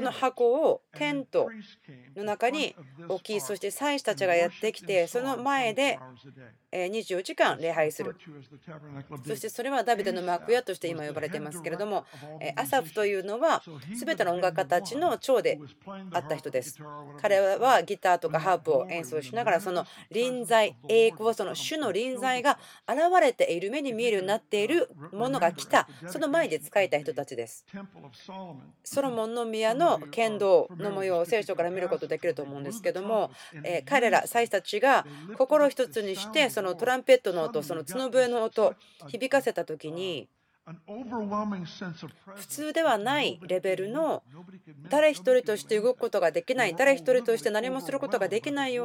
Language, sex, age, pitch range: Japanese, female, 40-59, 170-250 Hz